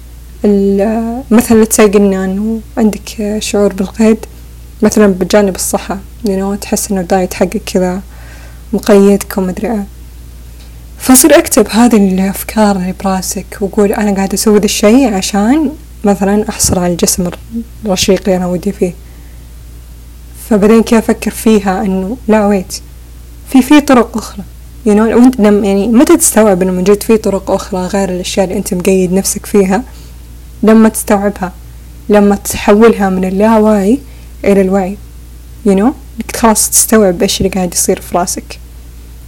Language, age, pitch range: Arabic, 20-39, 185-220 Hz